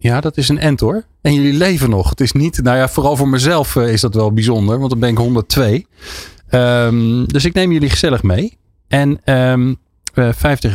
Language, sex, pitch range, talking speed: Dutch, male, 90-125 Hz, 205 wpm